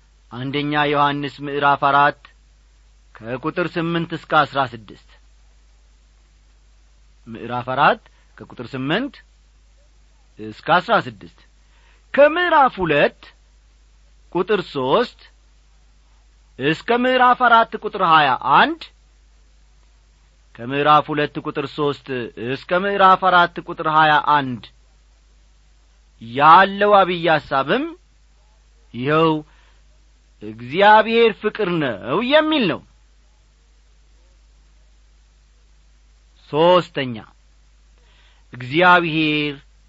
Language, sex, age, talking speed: Amharic, male, 40-59, 65 wpm